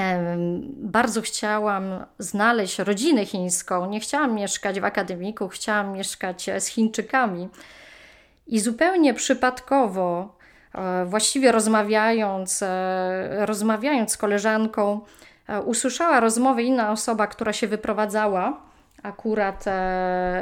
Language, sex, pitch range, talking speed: Polish, female, 200-250 Hz, 90 wpm